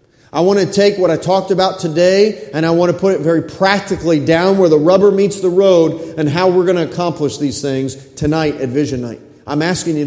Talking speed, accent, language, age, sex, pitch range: 230 wpm, American, English, 40-59, male, 150-195 Hz